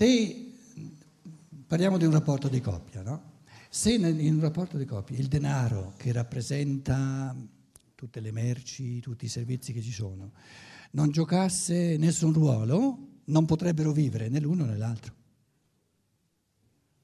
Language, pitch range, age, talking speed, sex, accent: Italian, 115-160 Hz, 60-79, 135 wpm, male, native